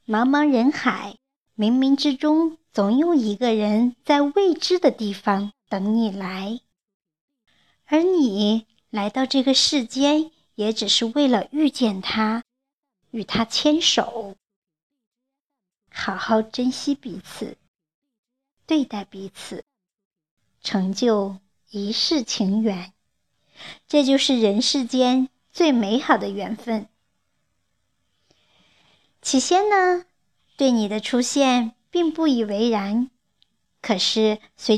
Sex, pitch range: male, 210-275 Hz